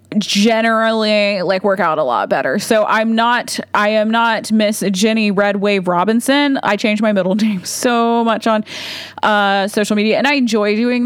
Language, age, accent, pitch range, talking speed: English, 30-49, American, 200-235 Hz, 180 wpm